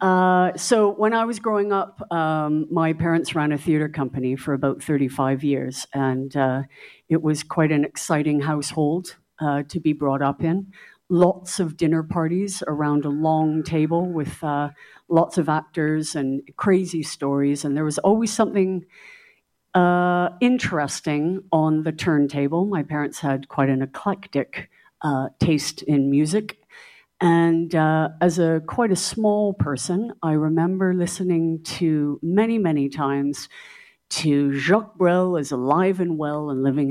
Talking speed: 150 wpm